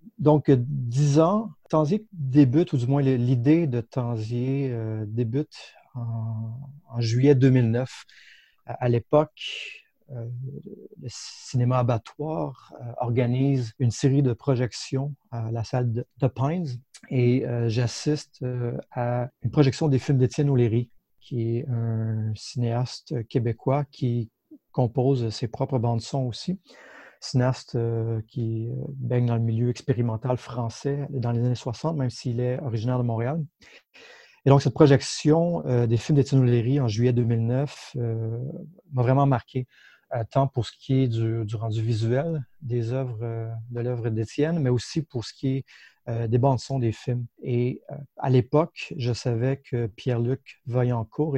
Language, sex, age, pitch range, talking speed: French, male, 40-59, 120-140 Hz, 145 wpm